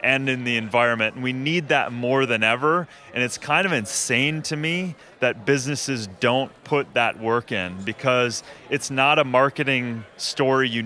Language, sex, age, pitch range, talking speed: English, male, 30-49, 115-140 Hz, 170 wpm